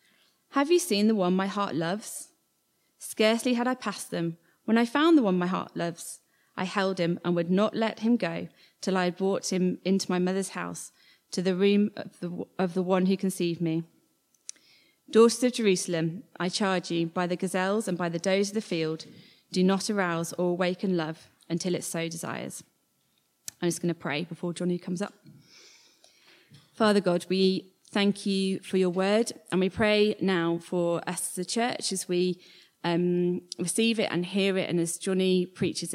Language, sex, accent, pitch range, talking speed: English, female, British, 170-200 Hz, 190 wpm